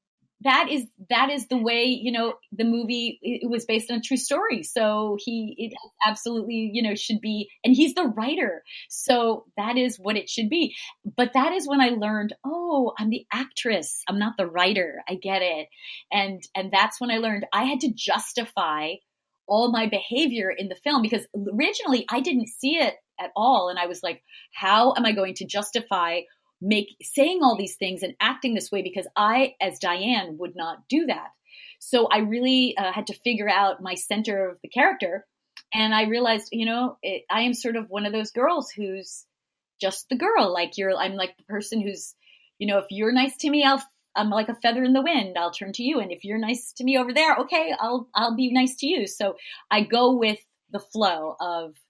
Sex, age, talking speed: female, 30-49, 210 wpm